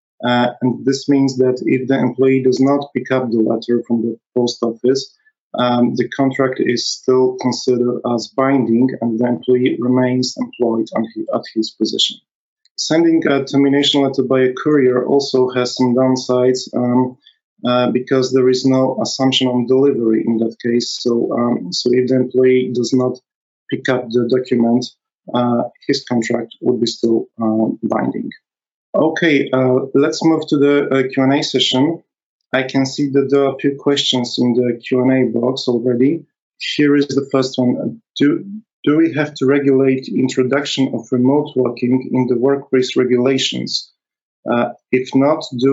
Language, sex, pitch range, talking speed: English, male, 125-135 Hz, 165 wpm